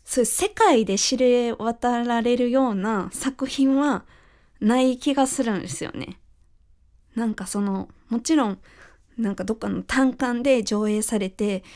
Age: 20-39